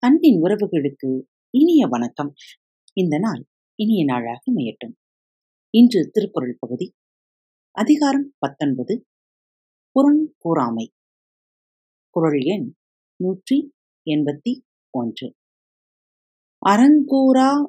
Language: Tamil